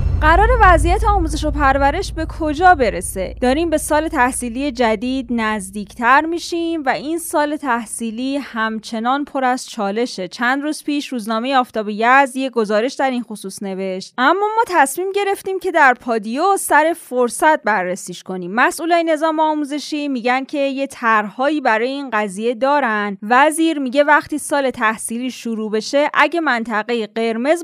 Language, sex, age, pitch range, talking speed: Persian, female, 20-39, 230-315 Hz, 145 wpm